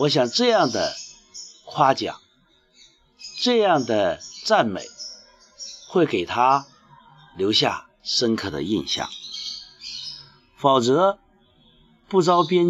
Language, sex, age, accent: Chinese, male, 50-69, native